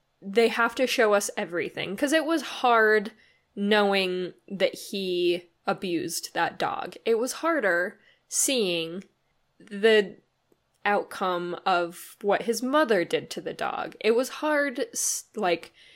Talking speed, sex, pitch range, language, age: 130 wpm, female, 185-245 Hz, English, 10-29